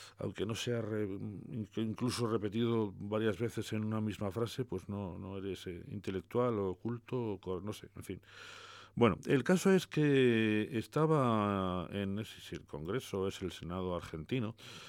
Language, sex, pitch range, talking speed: English, male, 90-110 Hz, 145 wpm